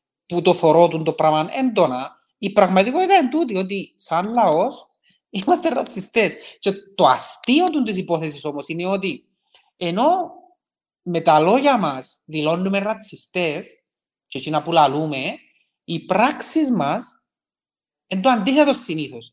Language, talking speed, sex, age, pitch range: Greek, 125 wpm, male, 30-49, 180-255 Hz